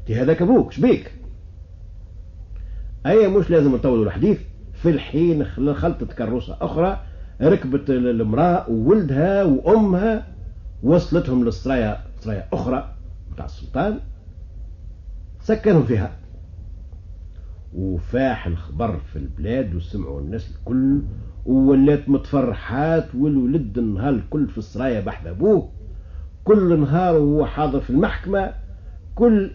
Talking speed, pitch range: 95 wpm, 85-145 Hz